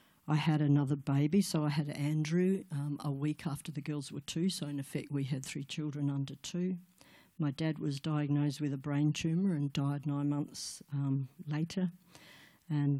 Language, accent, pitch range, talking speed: English, Australian, 140-155 Hz, 185 wpm